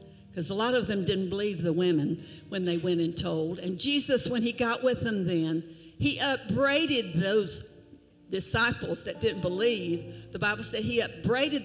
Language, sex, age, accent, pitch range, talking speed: English, female, 60-79, American, 175-235 Hz, 175 wpm